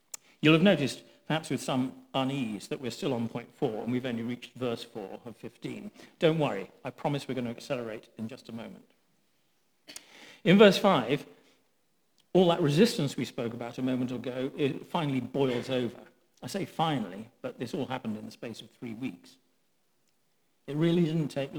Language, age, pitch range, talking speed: English, 50-69, 120-155 Hz, 185 wpm